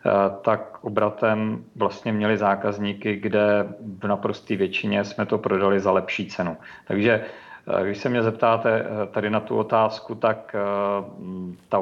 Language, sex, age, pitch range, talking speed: Czech, male, 40-59, 100-110 Hz, 130 wpm